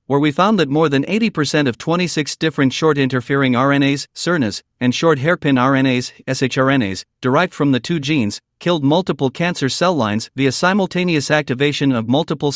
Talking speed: 155 wpm